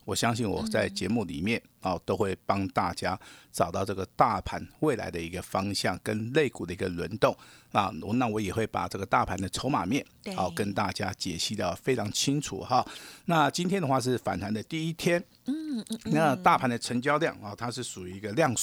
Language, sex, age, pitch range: Chinese, male, 50-69, 110-155 Hz